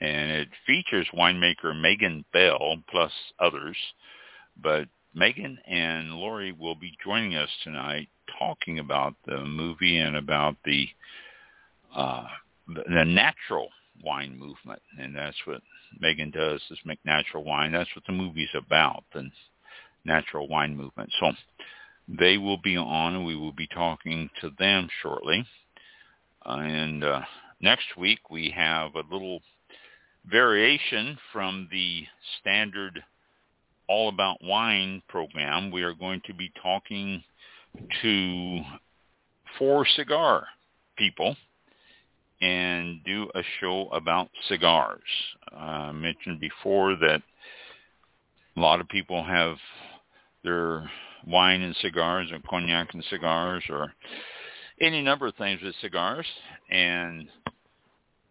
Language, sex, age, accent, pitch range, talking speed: English, male, 60-79, American, 80-95 Hz, 120 wpm